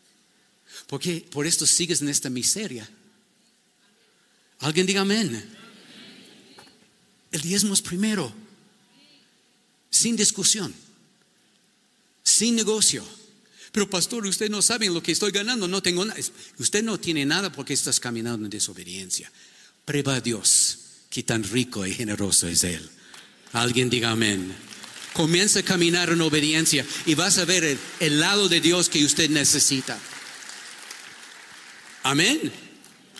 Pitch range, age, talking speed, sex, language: 120-190 Hz, 50-69, 130 wpm, male, Spanish